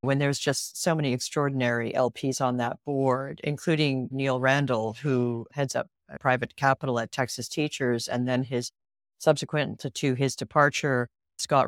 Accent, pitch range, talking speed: American, 130-165 Hz, 155 wpm